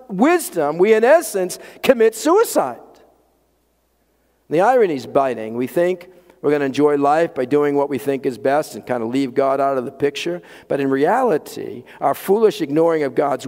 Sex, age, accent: male, 50-69, American